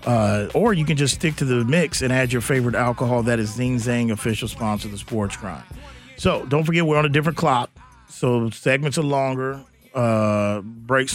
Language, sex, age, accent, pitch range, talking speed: English, male, 40-59, American, 115-145 Hz, 205 wpm